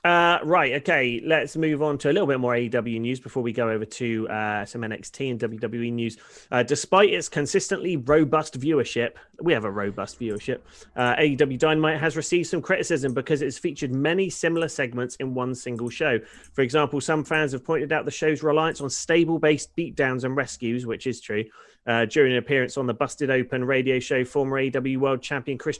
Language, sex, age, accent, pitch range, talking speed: English, male, 30-49, British, 120-155 Hz, 200 wpm